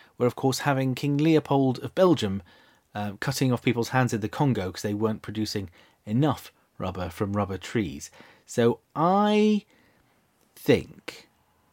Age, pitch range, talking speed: 30-49, 110-150 Hz, 145 wpm